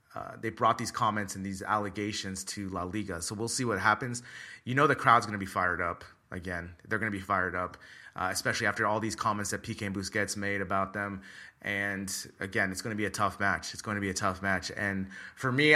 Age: 30-49